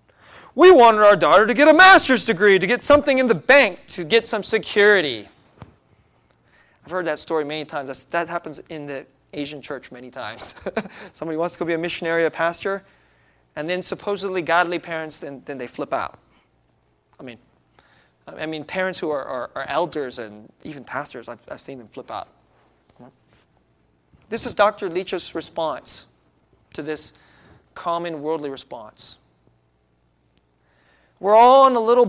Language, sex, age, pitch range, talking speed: English, male, 30-49, 135-220 Hz, 160 wpm